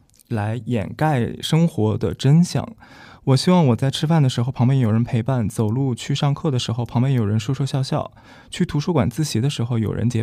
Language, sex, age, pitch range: Chinese, male, 20-39, 115-135 Hz